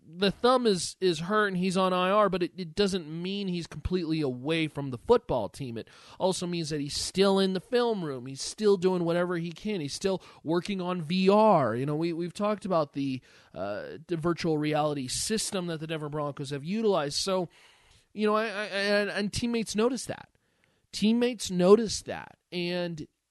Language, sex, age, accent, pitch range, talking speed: English, male, 30-49, American, 160-200 Hz, 195 wpm